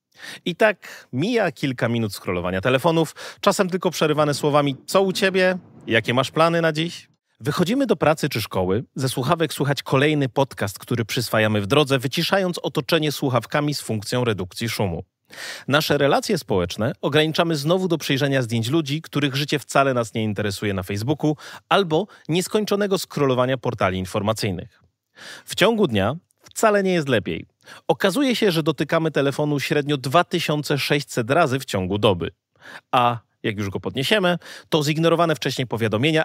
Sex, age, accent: male, 30-49, native